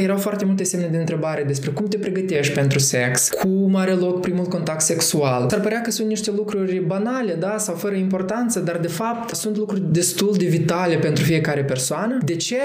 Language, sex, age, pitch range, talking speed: Romanian, male, 20-39, 135-190 Hz, 200 wpm